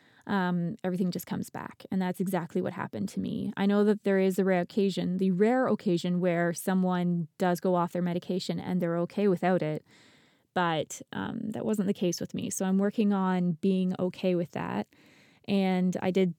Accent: American